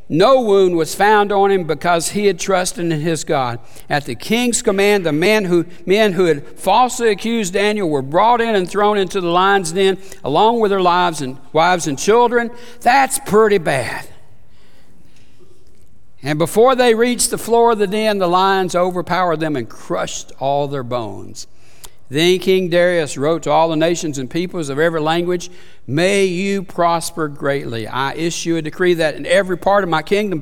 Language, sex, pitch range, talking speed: English, male, 140-200 Hz, 180 wpm